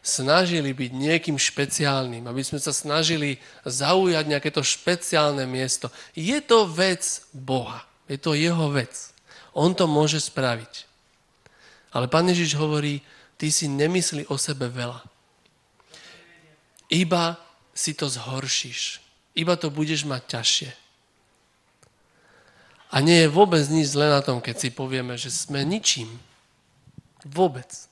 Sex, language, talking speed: male, Slovak, 125 wpm